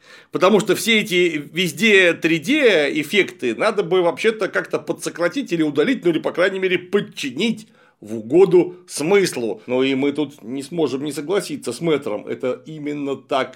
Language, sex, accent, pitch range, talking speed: Russian, male, native, 155-225 Hz, 155 wpm